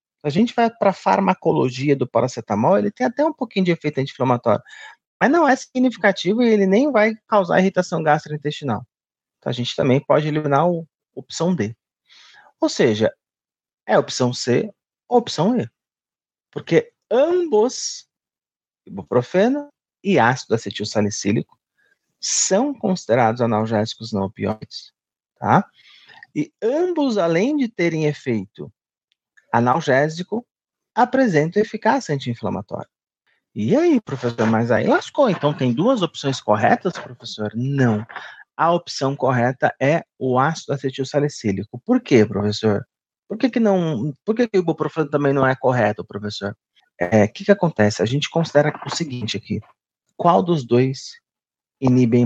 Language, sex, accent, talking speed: Portuguese, male, Brazilian, 140 wpm